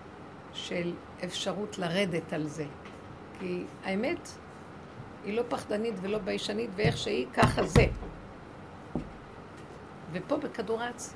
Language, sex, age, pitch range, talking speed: Hebrew, female, 50-69, 200-250 Hz, 95 wpm